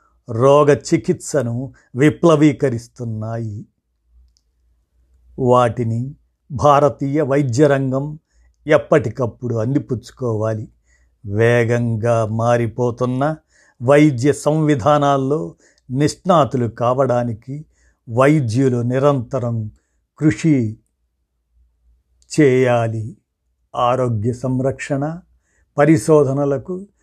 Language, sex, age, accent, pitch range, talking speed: Telugu, male, 50-69, native, 115-145 Hz, 50 wpm